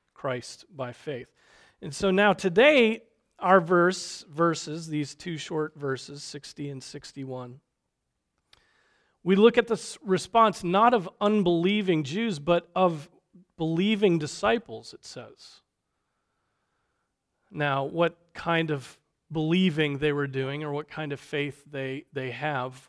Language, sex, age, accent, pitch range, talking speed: English, male, 40-59, American, 140-180 Hz, 125 wpm